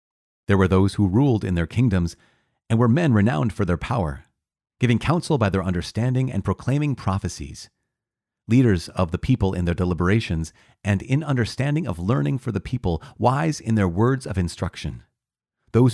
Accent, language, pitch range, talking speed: American, English, 90-125 Hz, 170 wpm